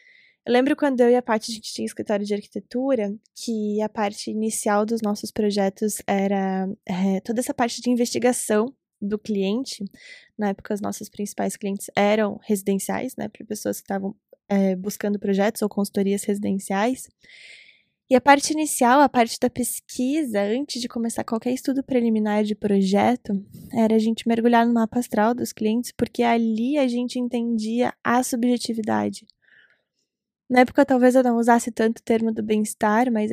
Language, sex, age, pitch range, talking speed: Portuguese, female, 10-29, 205-240 Hz, 165 wpm